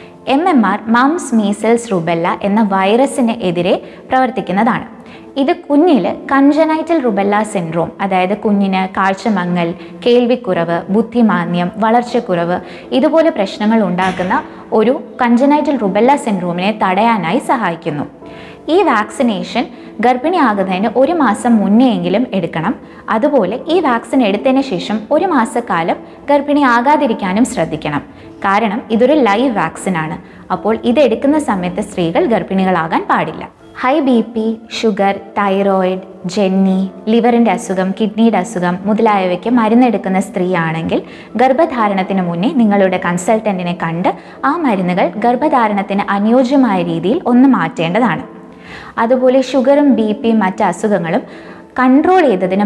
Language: Malayalam